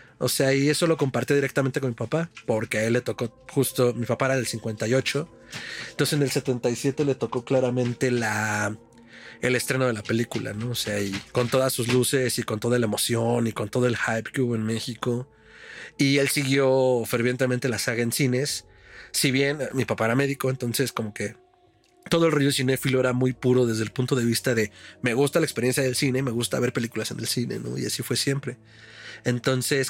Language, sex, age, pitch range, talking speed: Spanish, male, 40-59, 115-140 Hz, 210 wpm